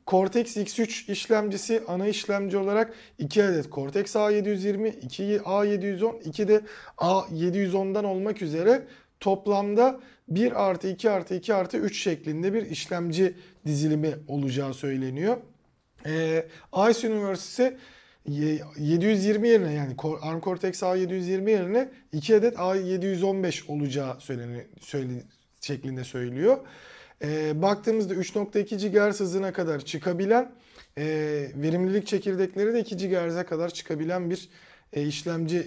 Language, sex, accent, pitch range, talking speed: Turkish, male, native, 155-200 Hz, 115 wpm